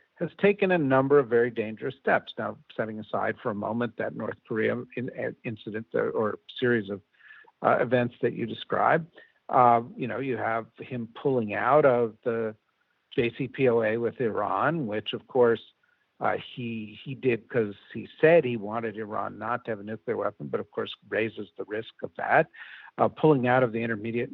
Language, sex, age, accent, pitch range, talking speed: English, male, 60-79, American, 110-135 Hz, 180 wpm